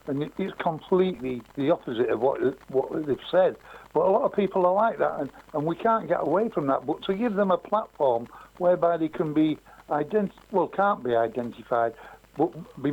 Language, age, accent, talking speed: English, 60-79, British, 200 wpm